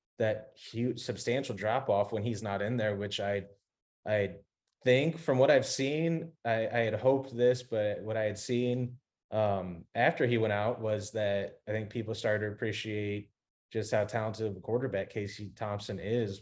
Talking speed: 180 wpm